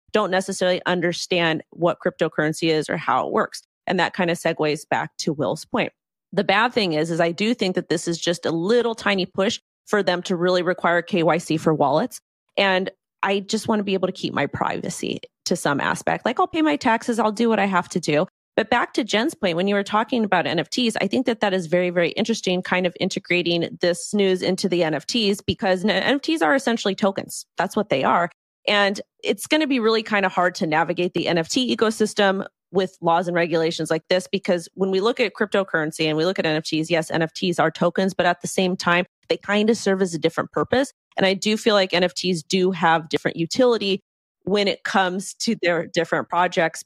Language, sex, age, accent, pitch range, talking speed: English, female, 30-49, American, 170-200 Hz, 220 wpm